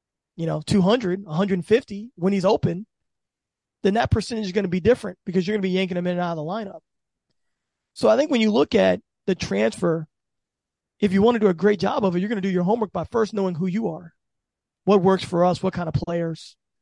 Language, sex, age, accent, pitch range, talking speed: English, male, 20-39, American, 175-200 Hz, 240 wpm